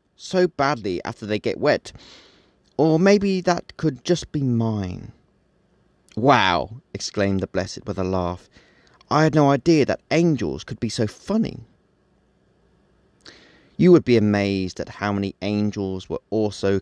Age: 30-49